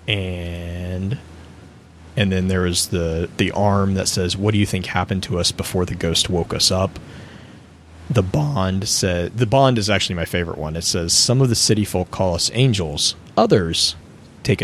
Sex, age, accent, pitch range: male, 30-49, American, 85-105 Hz